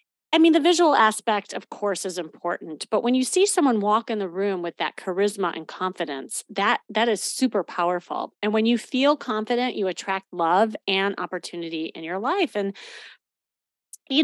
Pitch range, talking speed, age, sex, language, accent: 185-255 Hz, 180 wpm, 30-49, female, English, American